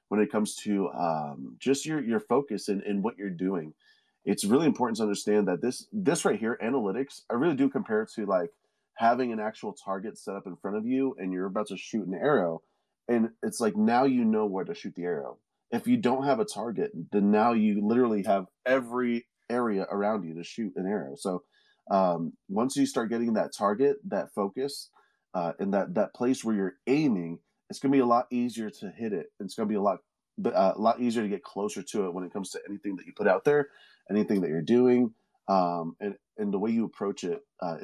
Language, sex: English, male